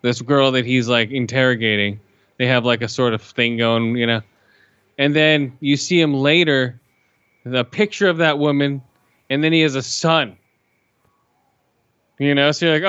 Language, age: English, 20-39